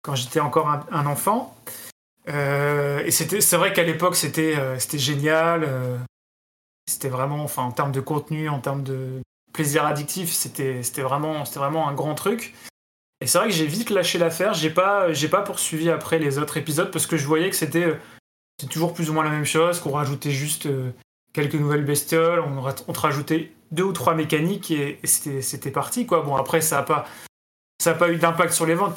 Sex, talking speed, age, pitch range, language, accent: male, 205 wpm, 20-39, 145-170 Hz, French, French